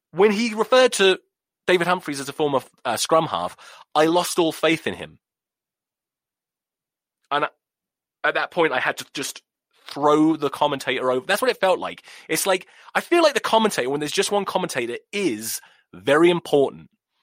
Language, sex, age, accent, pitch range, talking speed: English, male, 30-49, British, 135-220 Hz, 180 wpm